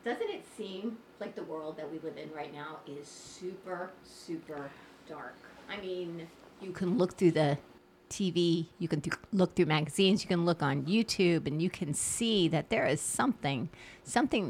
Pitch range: 160-210 Hz